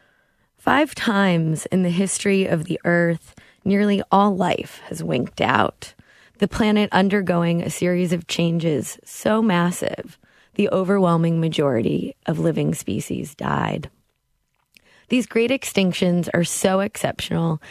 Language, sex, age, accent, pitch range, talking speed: English, female, 20-39, American, 170-200 Hz, 120 wpm